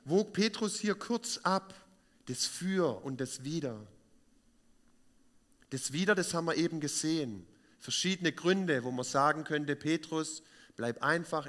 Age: 40-59